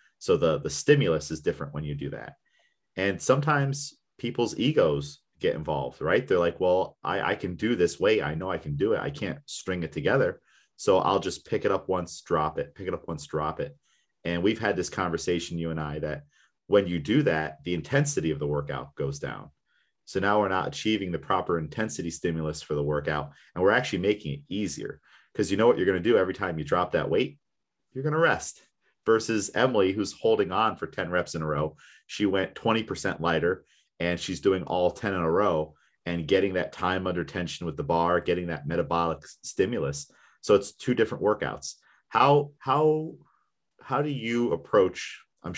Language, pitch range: English, 80-105 Hz